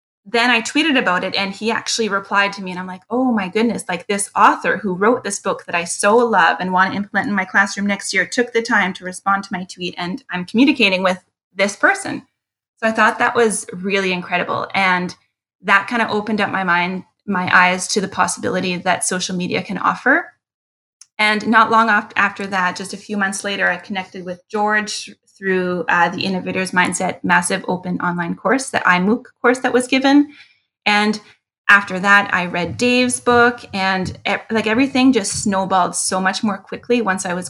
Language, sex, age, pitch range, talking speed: English, female, 20-39, 185-220 Hz, 200 wpm